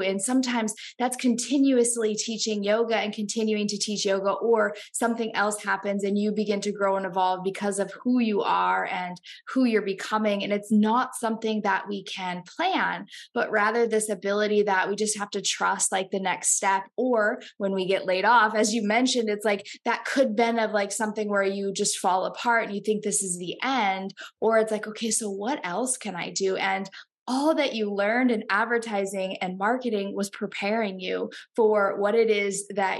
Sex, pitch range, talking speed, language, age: female, 195-235 Hz, 200 wpm, English, 10-29